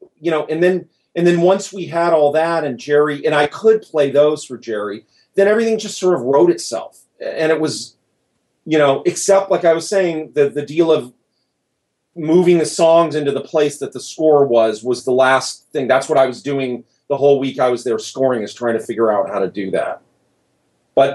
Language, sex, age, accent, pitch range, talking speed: English, male, 40-59, American, 125-165 Hz, 220 wpm